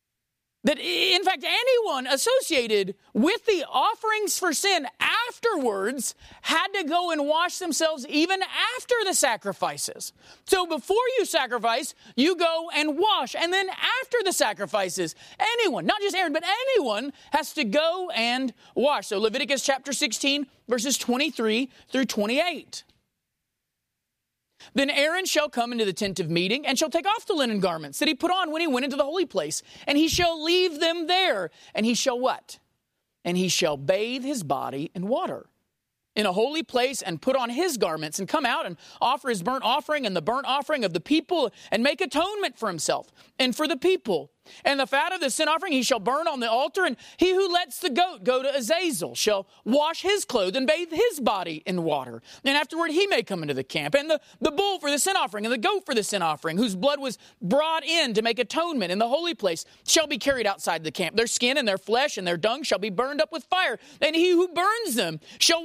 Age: 30-49